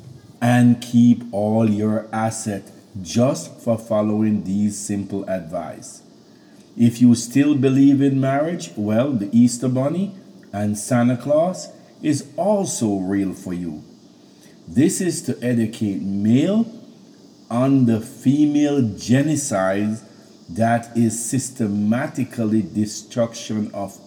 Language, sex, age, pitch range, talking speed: English, male, 50-69, 105-130 Hz, 105 wpm